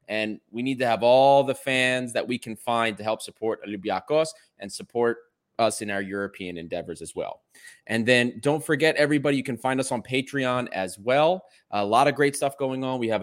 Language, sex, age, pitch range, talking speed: English, male, 20-39, 105-135 Hz, 215 wpm